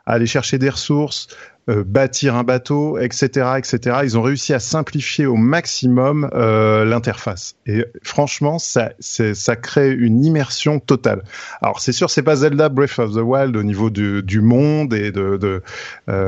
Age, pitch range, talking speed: 30-49, 110-145 Hz, 175 wpm